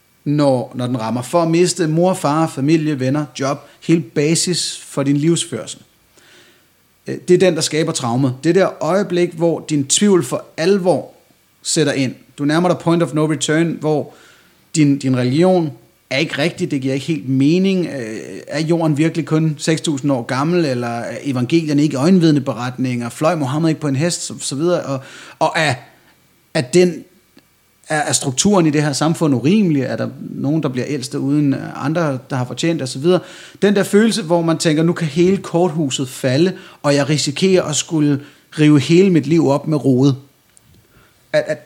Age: 30-49